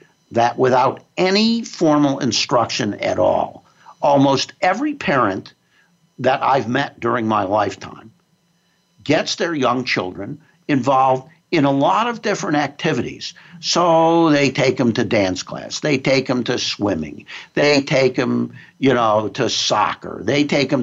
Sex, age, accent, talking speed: male, 60-79, American, 140 wpm